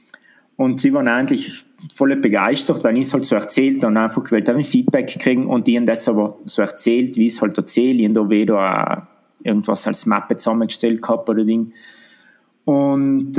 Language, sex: German, male